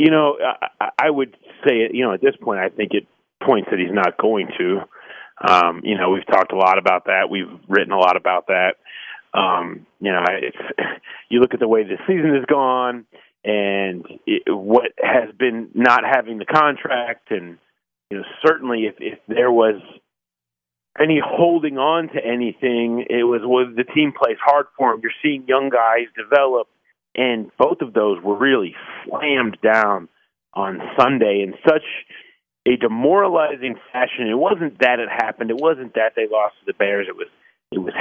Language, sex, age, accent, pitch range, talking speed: English, male, 30-49, American, 110-155 Hz, 185 wpm